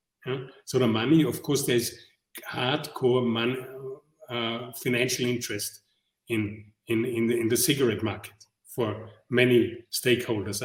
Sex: male